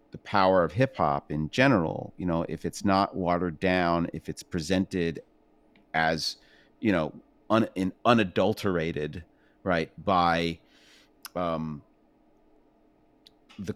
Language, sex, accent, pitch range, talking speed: English, male, American, 85-110 Hz, 120 wpm